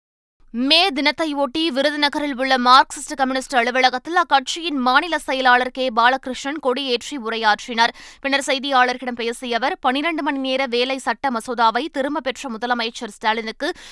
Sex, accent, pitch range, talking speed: female, native, 240-280 Hz, 120 wpm